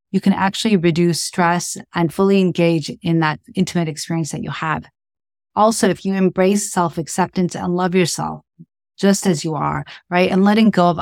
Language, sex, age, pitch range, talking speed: English, female, 30-49, 170-190 Hz, 175 wpm